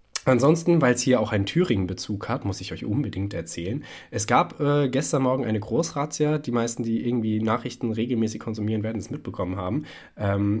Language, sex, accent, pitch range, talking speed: German, male, German, 100-135 Hz, 180 wpm